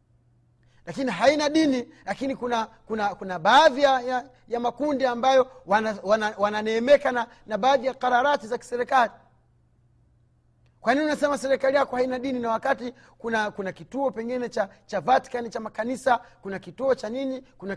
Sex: male